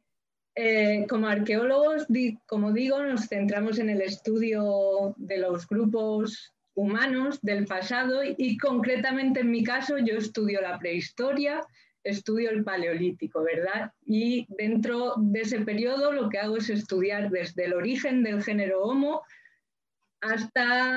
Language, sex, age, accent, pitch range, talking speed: Spanish, female, 30-49, Spanish, 195-245 Hz, 135 wpm